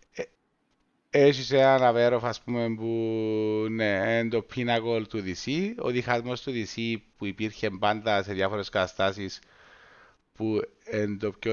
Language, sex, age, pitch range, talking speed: Greek, male, 30-49, 100-130 Hz, 125 wpm